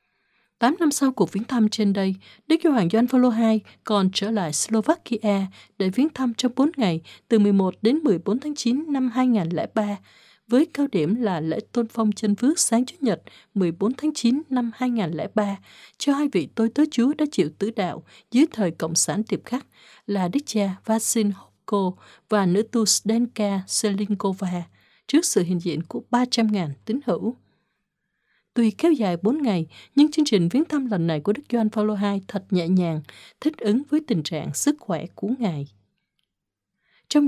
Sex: female